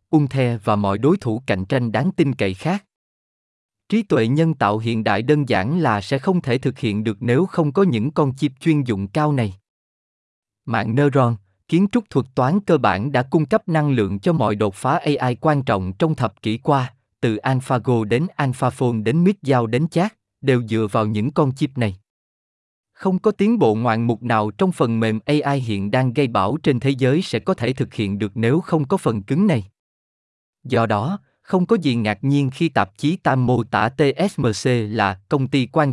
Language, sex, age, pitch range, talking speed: Vietnamese, male, 20-39, 110-155 Hz, 205 wpm